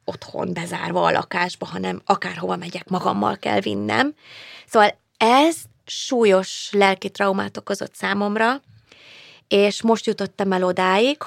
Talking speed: 115 wpm